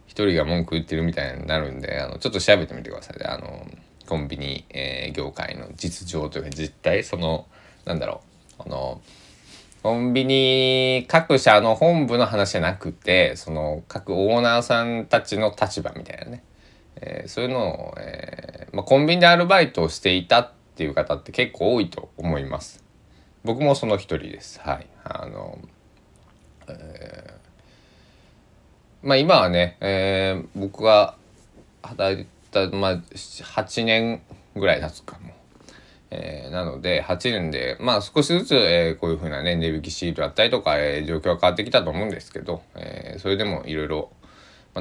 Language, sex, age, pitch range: Japanese, male, 20-39, 80-120 Hz